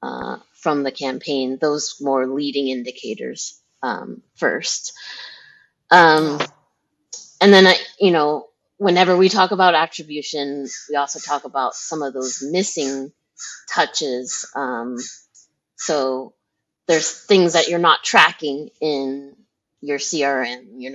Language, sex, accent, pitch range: English, female, American, 130-170 Hz